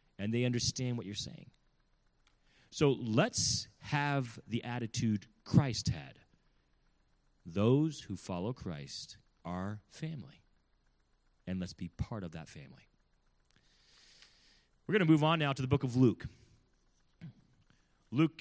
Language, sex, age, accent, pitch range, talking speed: English, male, 30-49, American, 120-160 Hz, 125 wpm